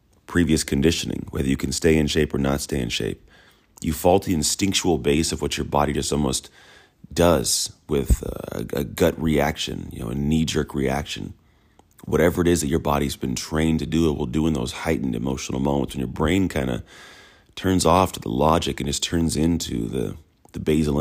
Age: 30-49